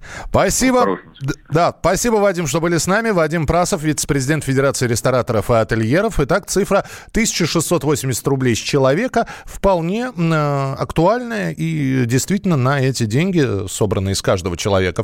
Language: Russian